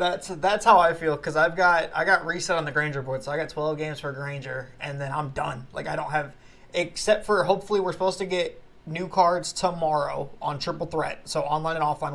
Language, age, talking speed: English, 20-39, 230 wpm